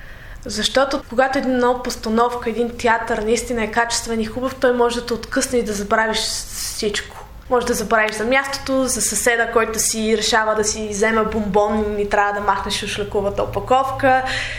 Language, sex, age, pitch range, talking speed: Bulgarian, female, 20-39, 215-255 Hz, 175 wpm